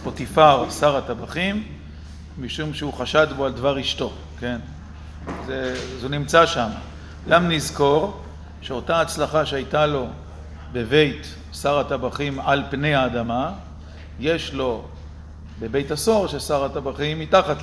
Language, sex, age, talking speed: Hebrew, male, 50-69, 120 wpm